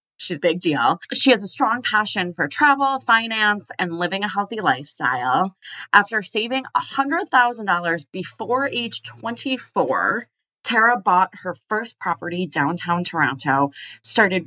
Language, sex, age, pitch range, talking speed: English, female, 30-49, 165-225 Hz, 130 wpm